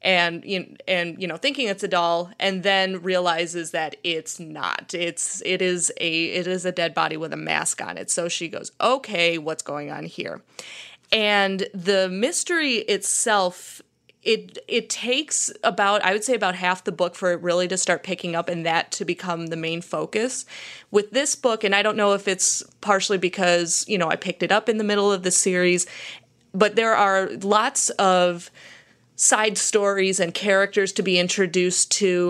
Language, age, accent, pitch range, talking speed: English, 20-39, American, 175-205 Hz, 190 wpm